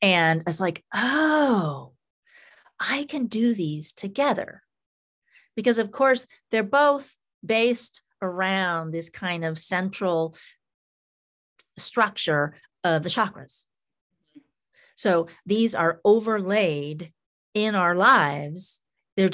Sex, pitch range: female, 165-225 Hz